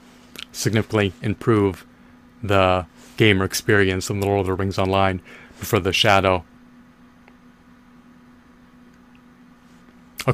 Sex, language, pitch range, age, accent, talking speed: male, English, 100-110 Hz, 30-49, American, 95 wpm